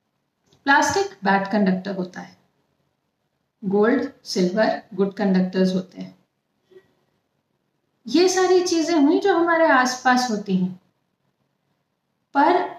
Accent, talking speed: native, 100 wpm